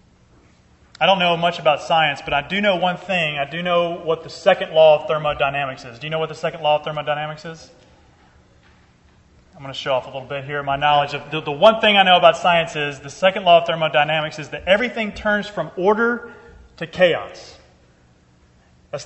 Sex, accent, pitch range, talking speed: male, American, 150-210 Hz, 210 wpm